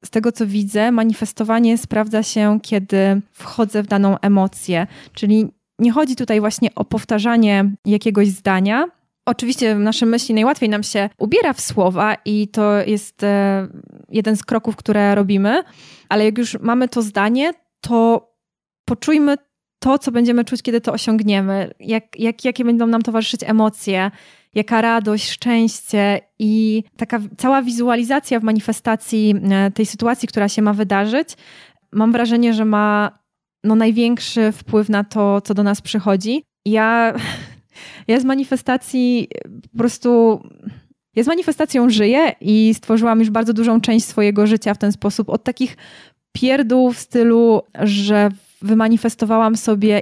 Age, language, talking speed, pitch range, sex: 20-39, Polish, 140 wpm, 205-235 Hz, female